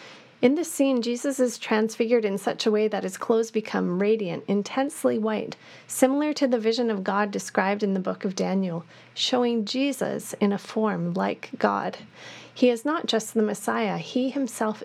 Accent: American